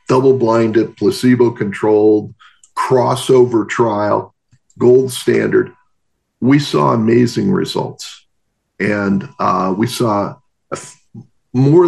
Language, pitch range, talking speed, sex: English, 105-145 Hz, 75 wpm, male